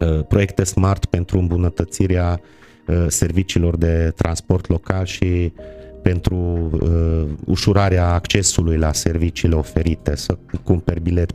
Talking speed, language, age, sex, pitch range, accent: 95 wpm, Romanian, 30-49, male, 85-100 Hz, native